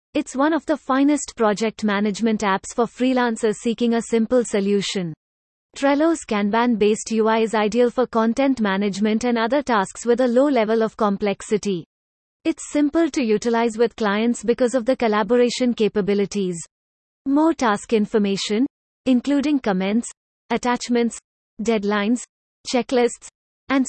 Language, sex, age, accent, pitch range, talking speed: English, female, 30-49, Indian, 215-260 Hz, 130 wpm